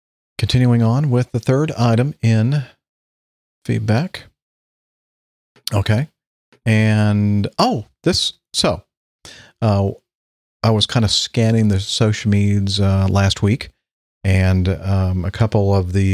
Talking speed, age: 115 wpm, 40-59